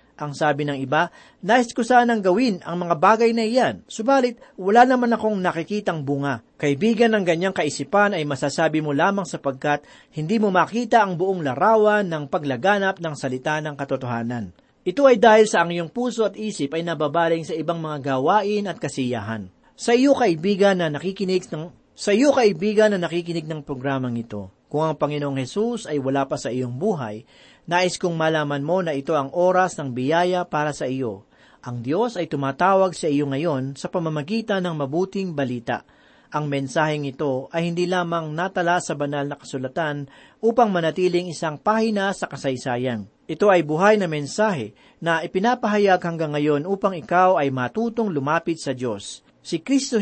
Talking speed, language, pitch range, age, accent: 165 wpm, Filipino, 145-200 Hz, 40-59, native